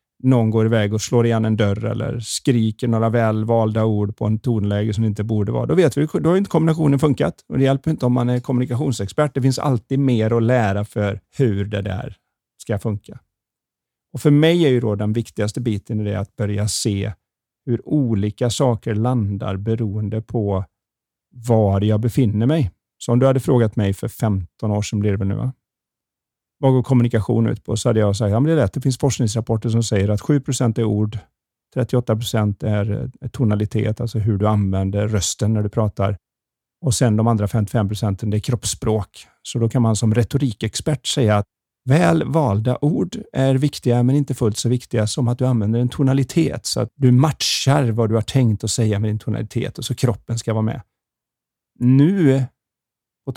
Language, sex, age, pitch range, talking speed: Swedish, male, 40-59, 105-130 Hz, 195 wpm